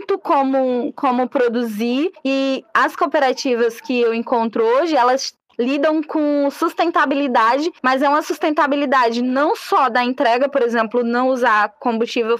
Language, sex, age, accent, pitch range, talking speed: Portuguese, female, 10-29, Brazilian, 250-315 Hz, 135 wpm